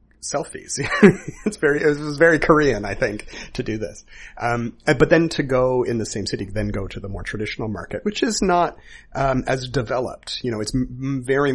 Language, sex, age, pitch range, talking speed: English, male, 30-49, 100-135 Hz, 190 wpm